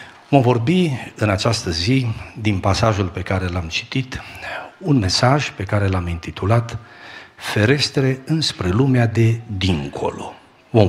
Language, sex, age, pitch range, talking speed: Romanian, male, 50-69, 100-135 Hz, 125 wpm